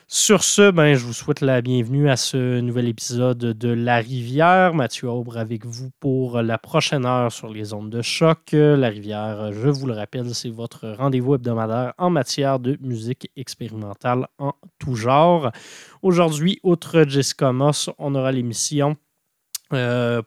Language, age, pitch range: French, 20-39, 120-145 Hz